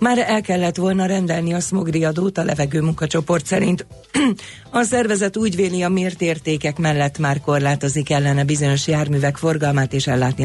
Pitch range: 135-170 Hz